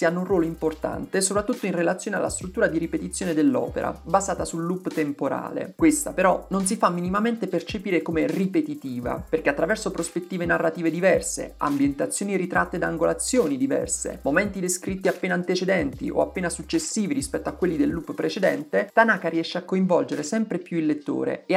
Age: 30-49